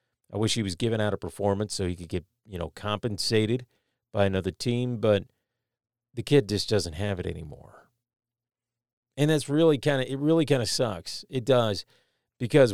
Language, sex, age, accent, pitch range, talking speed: English, male, 40-59, American, 100-125 Hz, 185 wpm